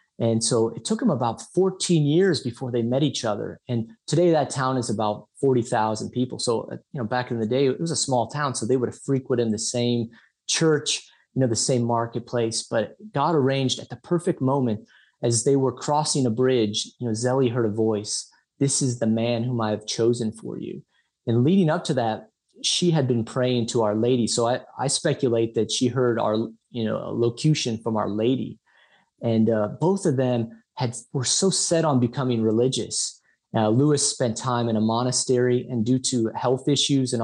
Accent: American